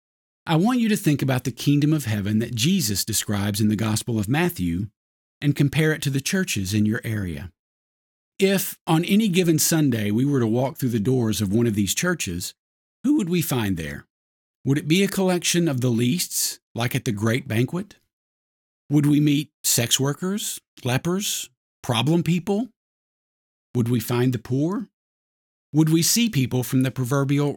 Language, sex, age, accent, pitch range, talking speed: English, male, 50-69, American, 110-160 Hz, 180 wpm